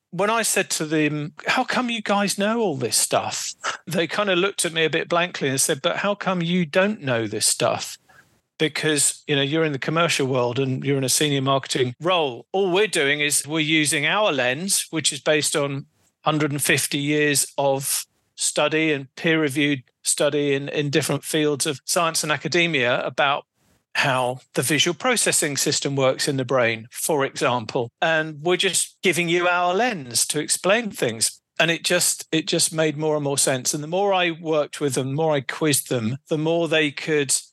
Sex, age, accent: male, 40-59, British